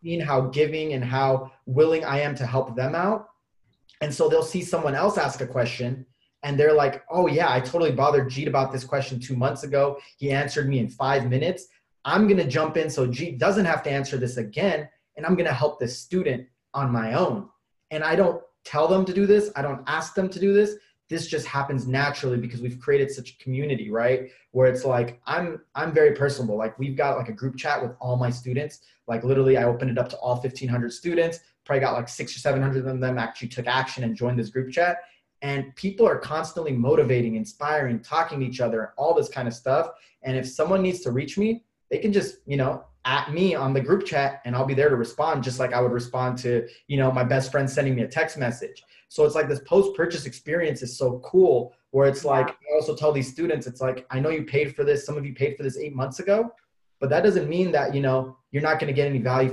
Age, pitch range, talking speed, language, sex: 20-39, 130-165 Hz, 235 wpm, English, male